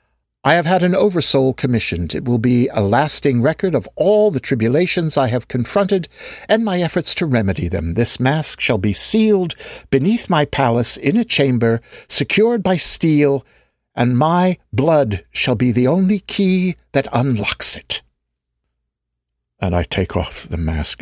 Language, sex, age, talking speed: English, male, 60-79, 160 wpm